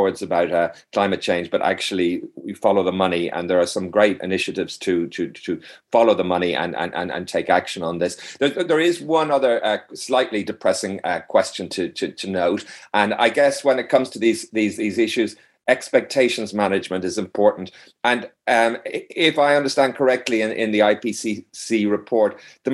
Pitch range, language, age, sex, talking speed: 95-135 Hz, English, 40-59, male, 190 wpm